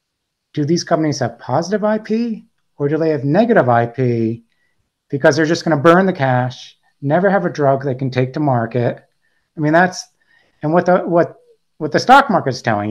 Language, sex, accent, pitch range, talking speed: English, male, American, 125-165 Hz, 195 wpm